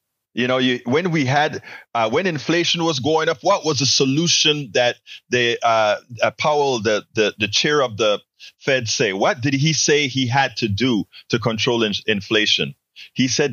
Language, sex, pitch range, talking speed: English, male, 125-165 Hz, 190 wpm